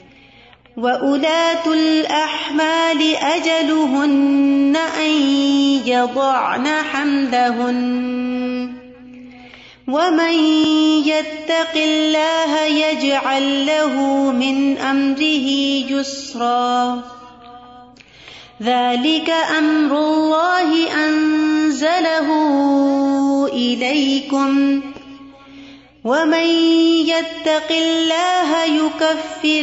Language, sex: Urdu, female